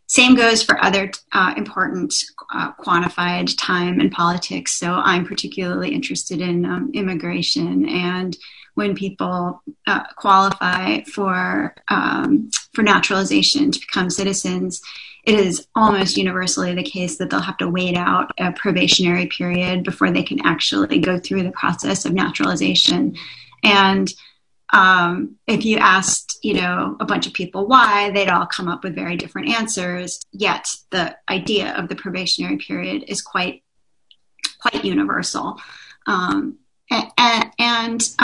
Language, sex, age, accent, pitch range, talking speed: English, female, 30-49, American, 180-235 Hz, 140 wpm